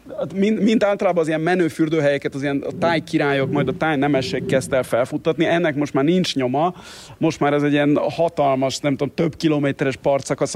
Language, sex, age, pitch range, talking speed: Hungarian, male, 30-49, 130-155 Hz, 195 wpm